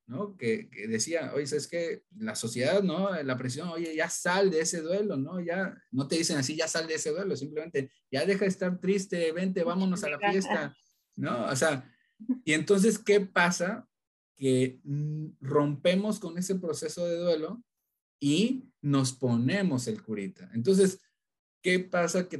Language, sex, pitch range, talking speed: Spanish, male, 120-180 Hz, 170 wpm